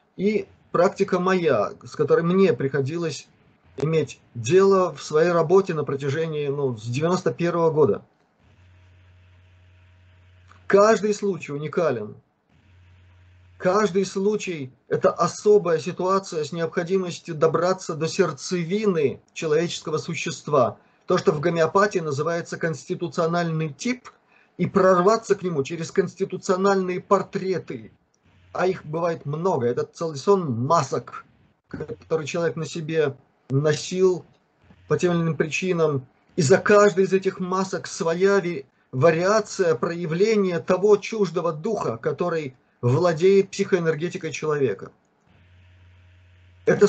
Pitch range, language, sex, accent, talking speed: 140-190 Hz, Russian, male, native, 105 wpm